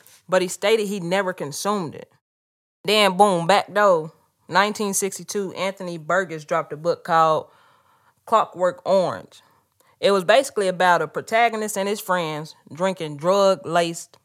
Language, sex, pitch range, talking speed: English, female, 180-260 Hz, 130 wpm